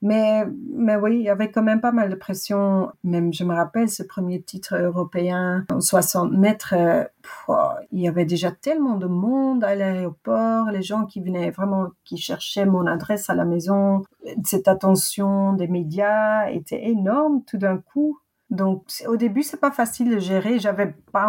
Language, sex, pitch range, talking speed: French, female, 175-220 Hz, 180 wpm